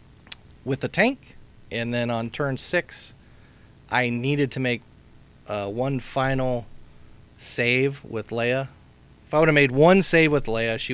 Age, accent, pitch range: 30-49, American, 115-140 Hz